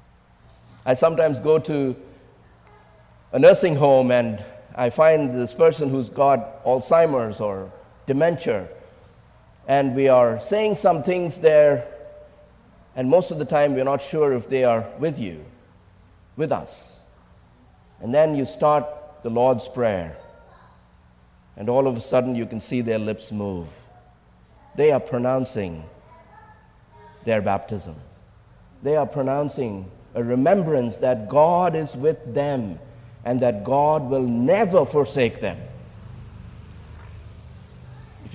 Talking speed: 125 wpm